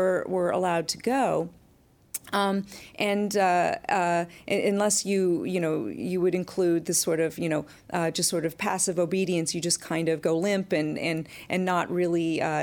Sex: female